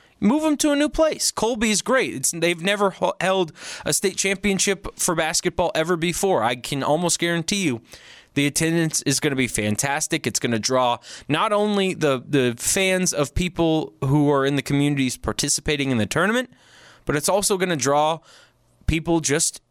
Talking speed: 180 wpm